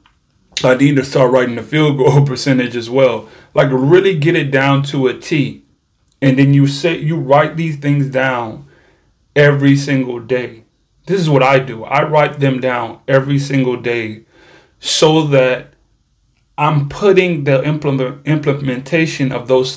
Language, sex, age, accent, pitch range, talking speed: English, male, 30-49, American, 120-140 Hz, 150 wpm